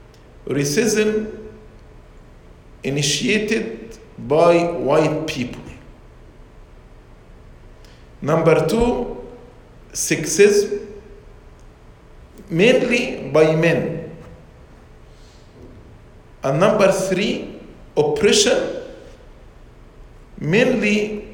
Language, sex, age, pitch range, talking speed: English, male, 50-69, 145-210 Hz, 45 wpm